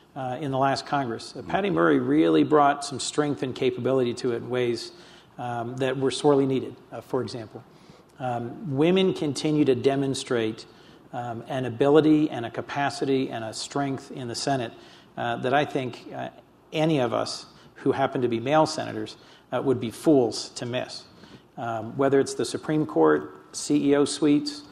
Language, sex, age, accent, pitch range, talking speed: English, male, 50-69, American, 125-145 Hz, 170 wpm